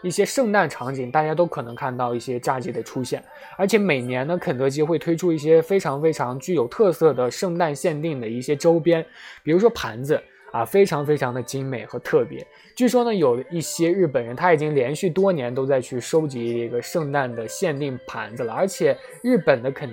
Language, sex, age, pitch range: Chinese, male, 20-39, 130-185 Hz